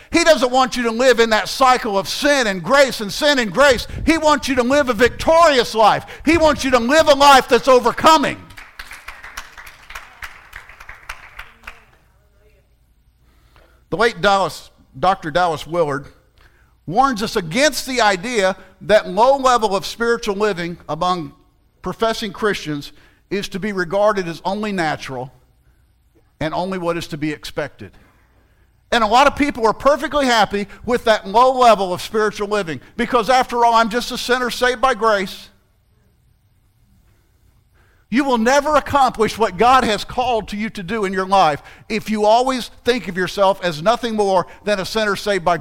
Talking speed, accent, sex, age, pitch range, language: 160 wpm, American, male, 50-69, 185-250 Hz, English